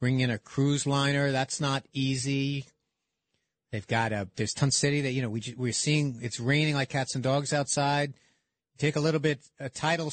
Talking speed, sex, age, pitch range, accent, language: 220 wpm, male, 50-69, 125-155 Hz, American, English